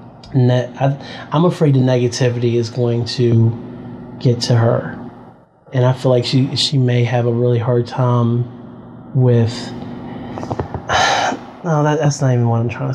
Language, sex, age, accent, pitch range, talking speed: English, male, 30-49, American, 120-135 Hz, 140 wpm